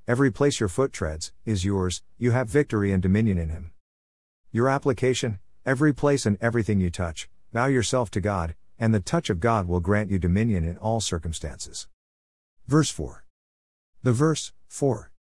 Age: 50-69